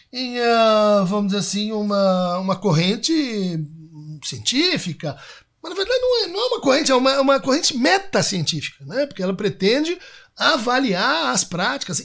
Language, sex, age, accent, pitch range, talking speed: Portuguese, male, 60-79, Brazilian, 185-285 Hz, 150 wpm